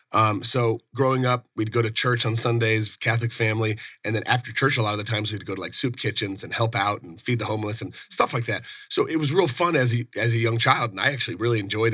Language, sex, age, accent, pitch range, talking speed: English, male, 30-49, American, 110-125 Hz, 270 wpm